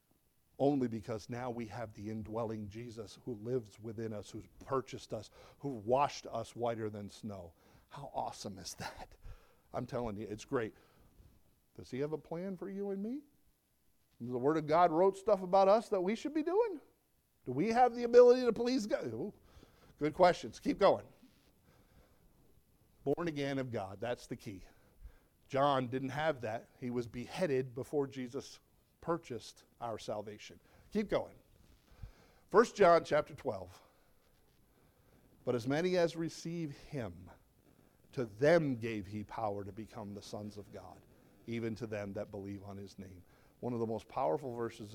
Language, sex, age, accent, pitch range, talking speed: English, male, 50-69, American, 105-145 Hz, 160 wpm